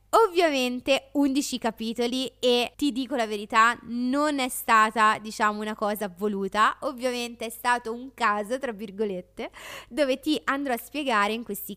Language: Italian